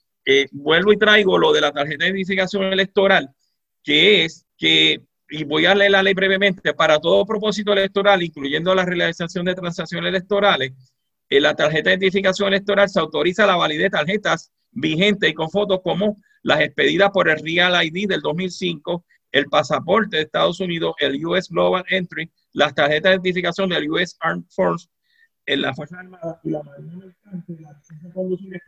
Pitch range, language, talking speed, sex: 145-190 Hz, Spanish, 160 wpm, male